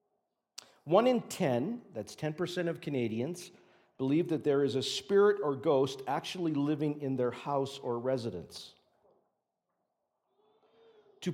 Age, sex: 50-69, male